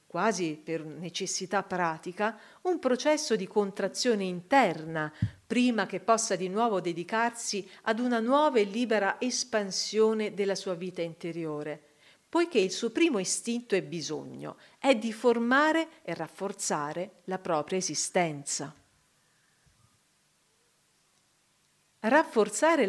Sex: female